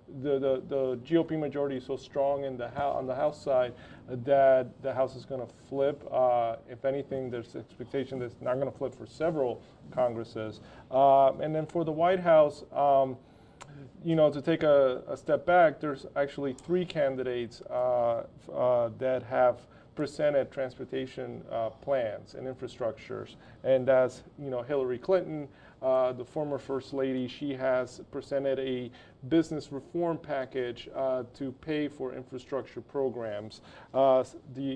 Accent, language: American, English